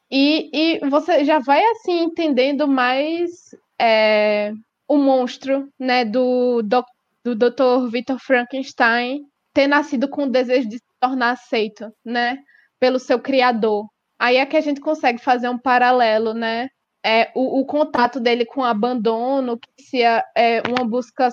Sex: female